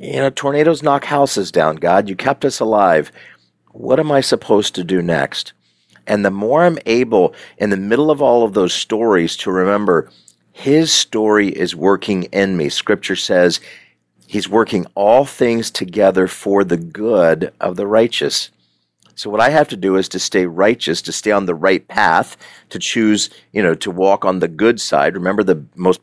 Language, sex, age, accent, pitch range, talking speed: English, male, 40-59, American, 85-115 Hz, 185 wpm